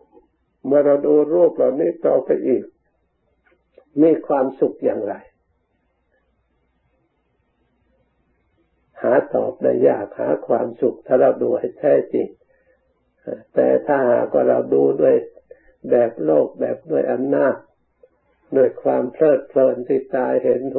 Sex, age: male, 60-79